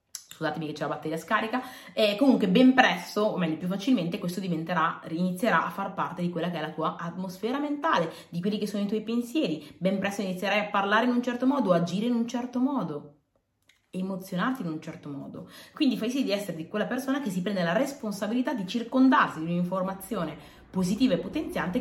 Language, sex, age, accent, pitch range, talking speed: Italian, female, 20-39, native, 160-240 Hz, 205 wpm